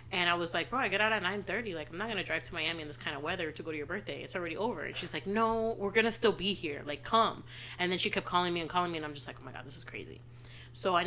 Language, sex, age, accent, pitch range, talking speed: English, female, 20-39, American, 155-200 Hz, 345 wpm